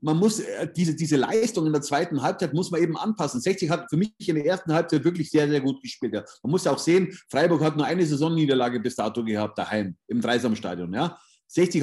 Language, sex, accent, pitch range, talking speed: German, male, German, 140-180 Hz, 230 wpm